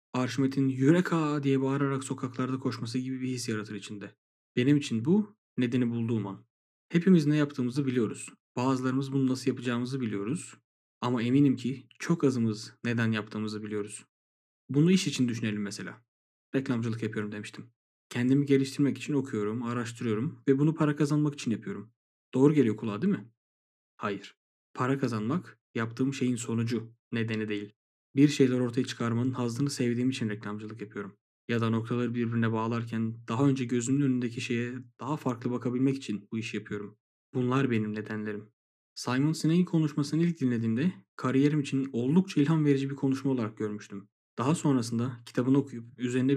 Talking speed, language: 150 wpm, Turkish